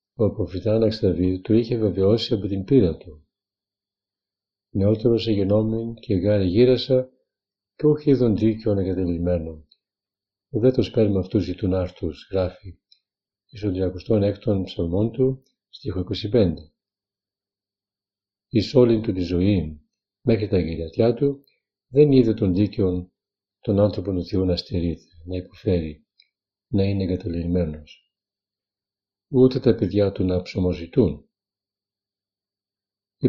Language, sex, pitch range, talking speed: Greek, male, 95-110 Hz, 110 wpm